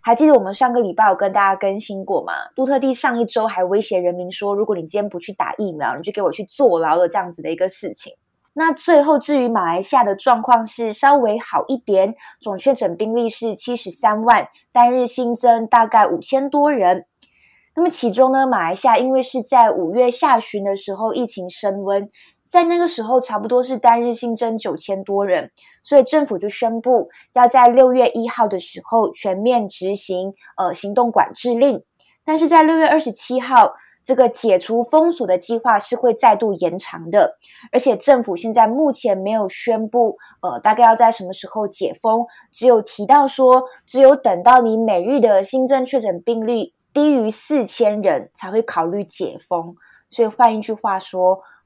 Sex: female